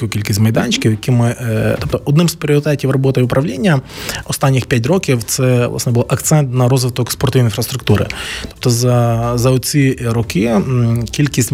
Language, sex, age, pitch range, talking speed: Ukrainian, male, 20-39, 110-135 Hz, 140 wpm